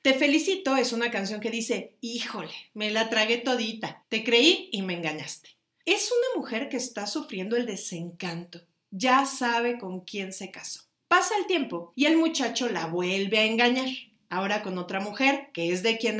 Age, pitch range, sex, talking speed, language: 40-59, 205-285 Hz, female, 180 wpm, Spanish